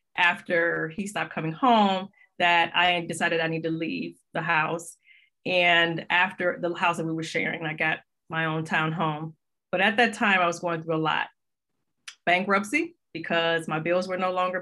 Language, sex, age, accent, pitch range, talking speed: English, female, 30-49, American, 170-190 Hz, 185 wpm